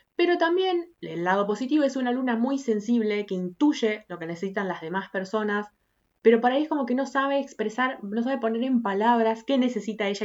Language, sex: Spanish, female